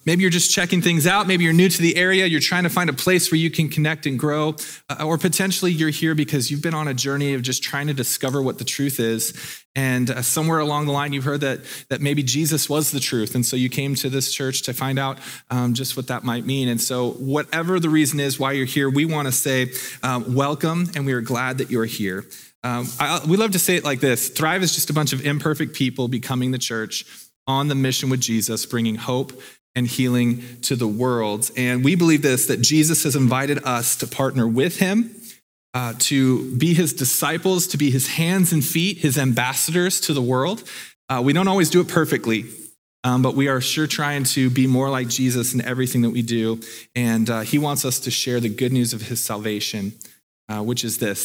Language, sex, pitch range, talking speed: English, male, 125-155 Hz, 230 wpm